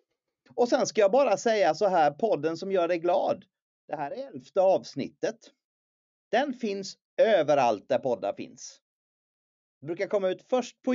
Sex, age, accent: male, 30-49, native